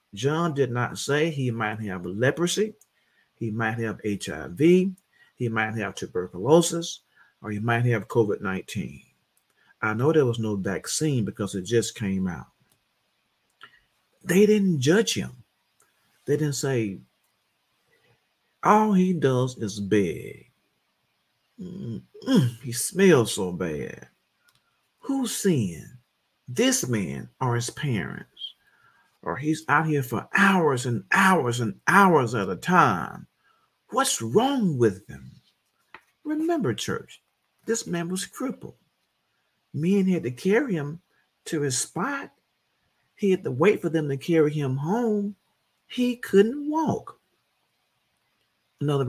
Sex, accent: male, American